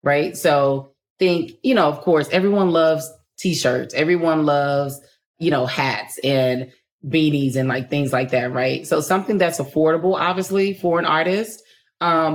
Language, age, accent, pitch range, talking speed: English, 30-49, American, 135-165 Hz, 155 wpm